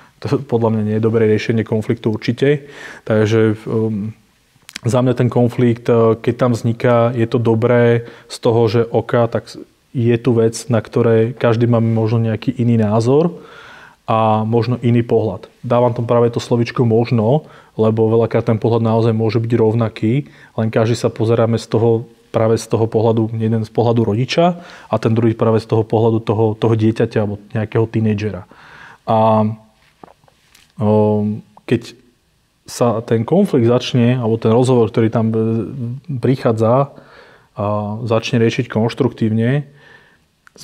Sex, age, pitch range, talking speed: male, 30-49, 110-120 Hz, 145 wpm